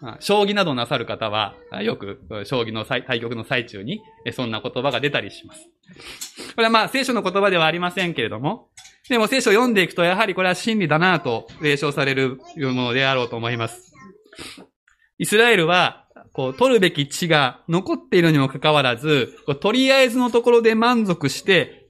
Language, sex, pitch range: Japanese, male, 135-210 Hz